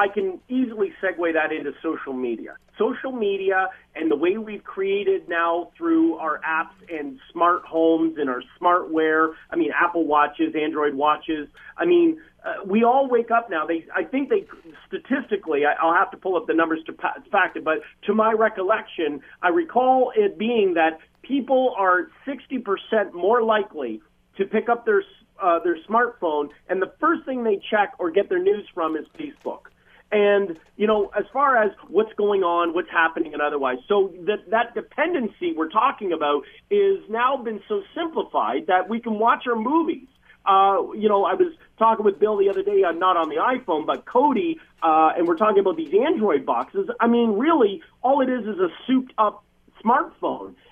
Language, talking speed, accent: English, 185 wpm, American